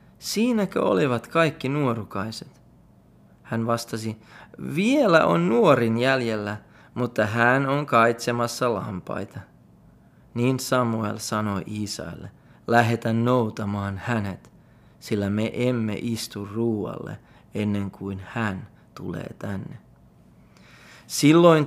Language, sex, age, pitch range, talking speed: Finnish, male, 30-49, 105-130 Hz, 90 wpm